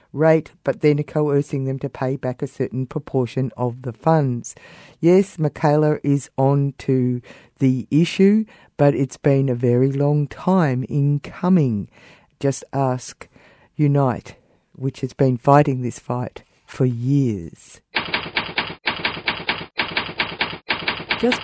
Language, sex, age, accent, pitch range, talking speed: English, female, 50-69, Australian, 130-160 Hz, 120 wpm